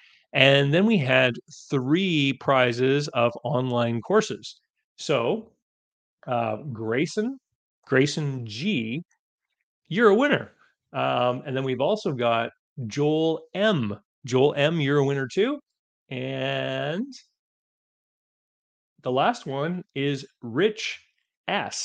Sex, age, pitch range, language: male, 30-49, 125-160 Hz, English